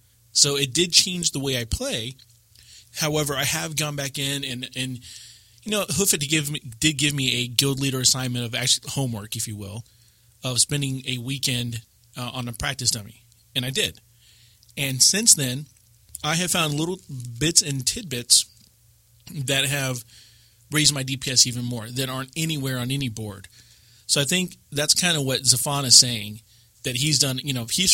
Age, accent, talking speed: 30-49, American, 185 wpm